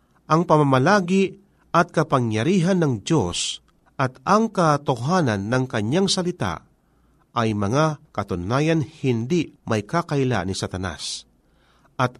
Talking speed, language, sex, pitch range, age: 105 wpm, Filipino, male, 120-175 Hz, 40-59